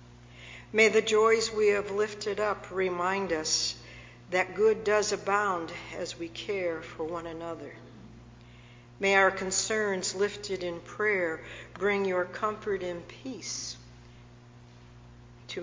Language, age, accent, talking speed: English, 60-79, American, 120 wpm